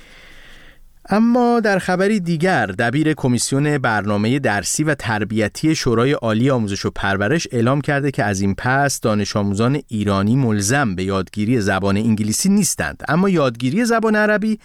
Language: Persian